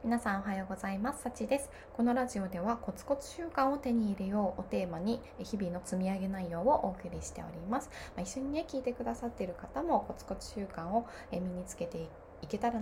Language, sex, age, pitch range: Japanese, female, 20-39, 185-255 Hz